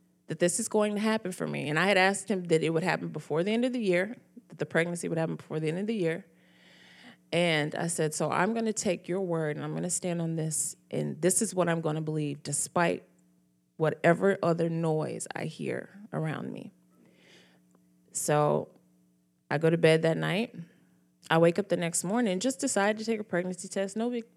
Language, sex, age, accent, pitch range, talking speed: English, female, 20-39, American, 155-200 Hz, 210 wpm